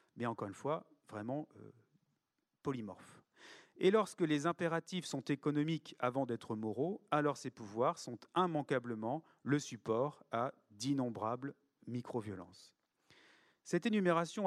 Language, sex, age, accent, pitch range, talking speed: French, male, 40-59, French, 125-175 Hz, 115 wpm